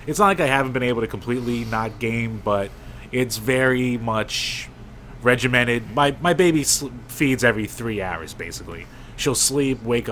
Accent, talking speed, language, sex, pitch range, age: American, 165 wpm, English, male, 110-130 Hz, 20-39